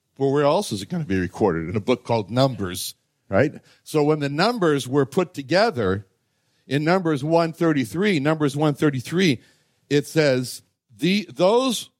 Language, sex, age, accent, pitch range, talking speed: English, male, 60-79, American, 120-170 Hz, 155 wpm